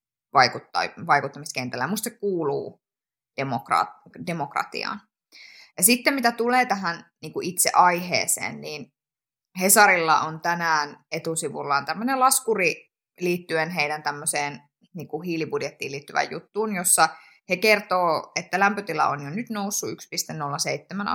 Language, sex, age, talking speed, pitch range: Finnish, female, 20-39, 105 wpm, 160-220 Hz